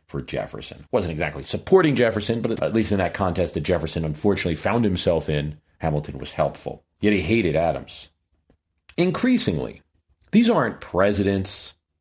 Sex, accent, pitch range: male, American, 80-105 Hz